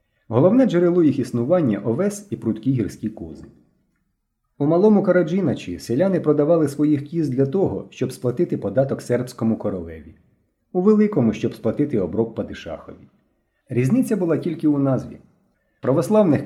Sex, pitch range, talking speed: male, 110-170 Hz, 135 wpm